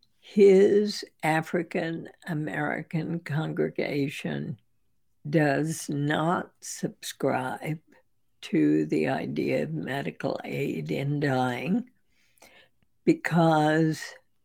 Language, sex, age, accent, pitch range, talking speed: English, female, 60-79, American, 125-170 Hz, 60 wpm